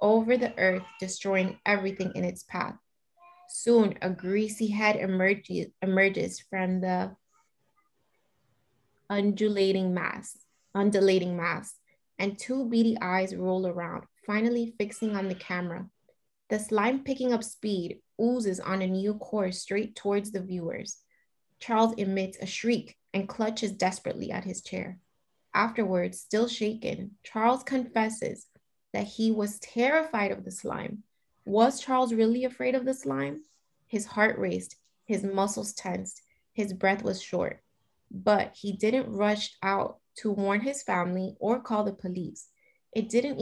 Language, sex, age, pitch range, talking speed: English, female, 20-39, 190-225 Hz, 135 wpm